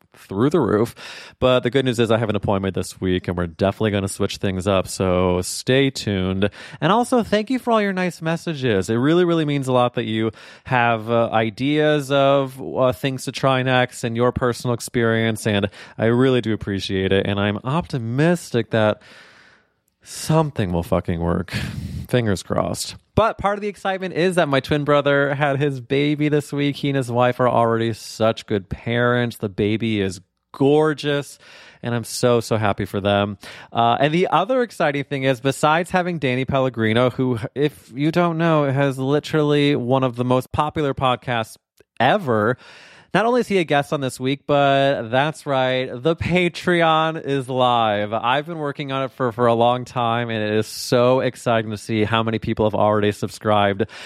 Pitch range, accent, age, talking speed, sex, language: 110-140 Hz, American, 30-49, 190 wpm, male, English